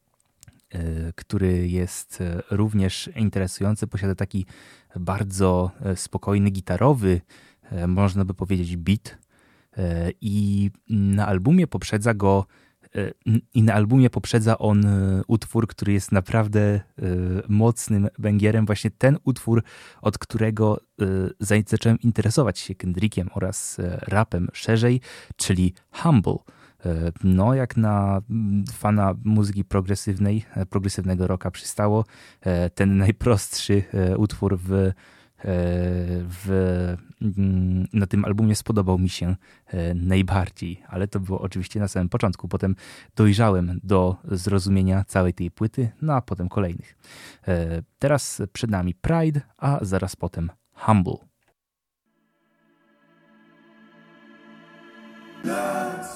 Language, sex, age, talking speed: Polish, male, 20-39, 95 wpm